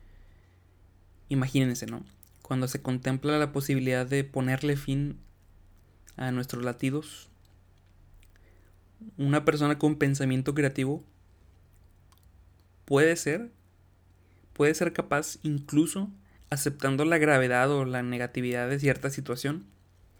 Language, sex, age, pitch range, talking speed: Spanish, male, 30-49, 100-145 Hz, 100 wpm